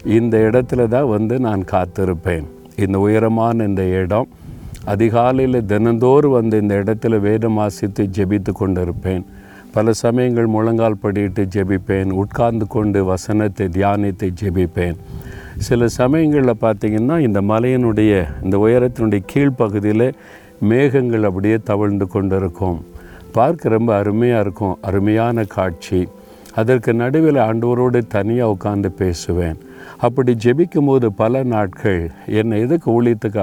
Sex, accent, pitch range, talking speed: male, native, 95-120 Hz, 110 wpm